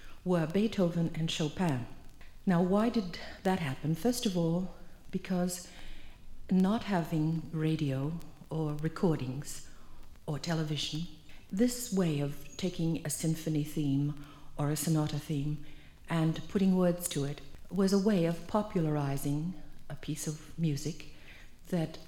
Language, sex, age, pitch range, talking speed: English, female, 60-79, 150-180 Hz, 125 wpm